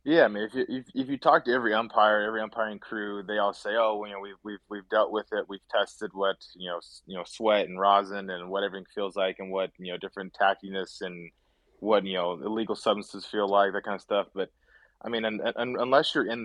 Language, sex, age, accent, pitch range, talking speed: English, male, 20-39, American, 95-105 Hz, 250 wpm